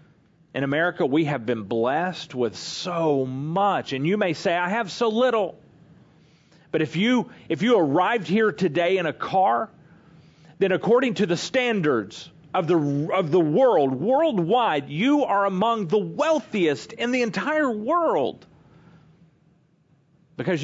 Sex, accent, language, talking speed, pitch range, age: male, American, English, 140 wpm, 160-210 Hz, 40-59